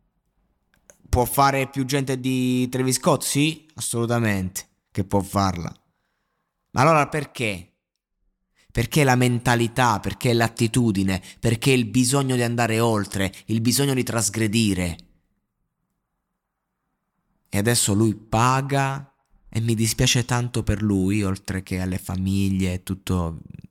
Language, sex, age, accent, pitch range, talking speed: Italian, male, 20-39, native, 95-120 Hz, 115 wpm